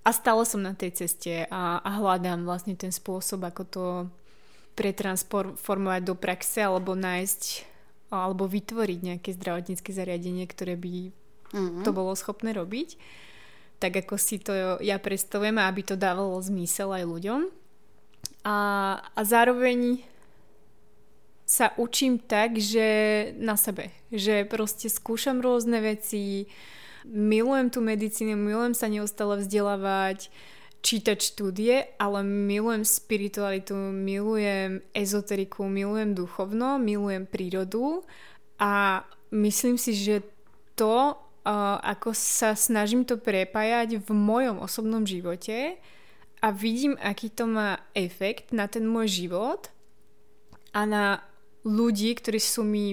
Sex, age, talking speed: female, 20-39, 120 wpm